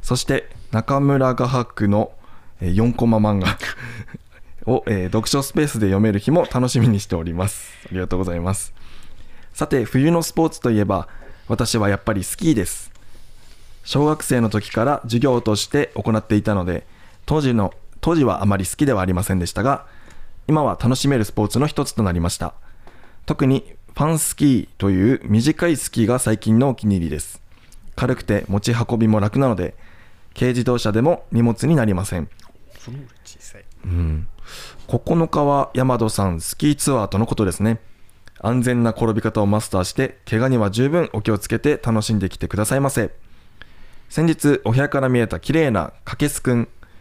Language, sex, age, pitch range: Japanese, male, 20-39, 100-130 Hz